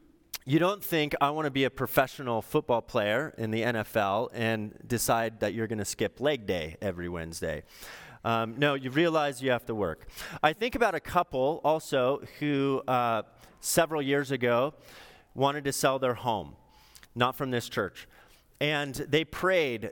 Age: 30-49